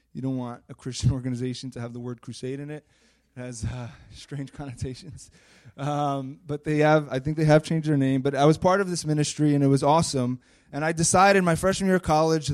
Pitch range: 125-160 Hz